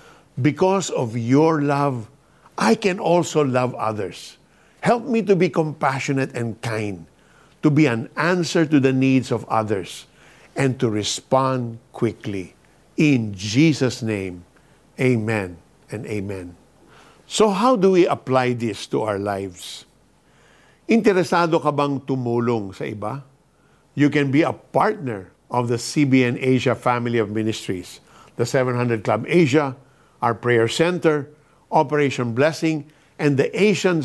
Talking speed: 130 wpm